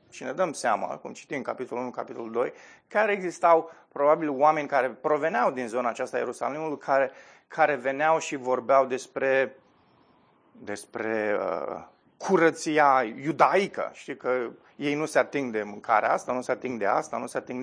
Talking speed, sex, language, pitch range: 160 wpm, male, Romanian, 125-170 Hz